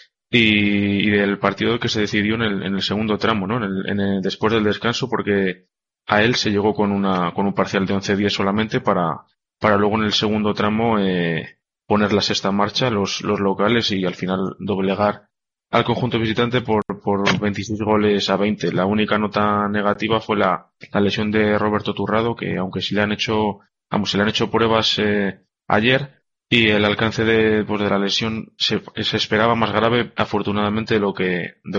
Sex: male